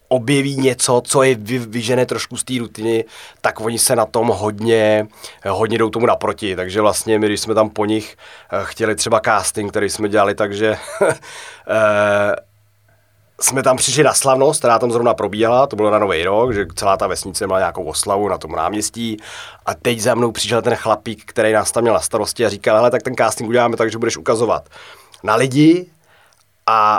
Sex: male